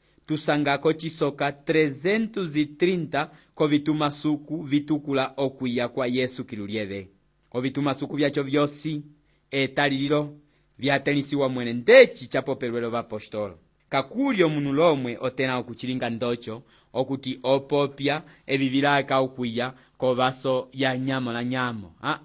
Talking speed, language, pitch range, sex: 120 wpm, English, 130-155 Hz, male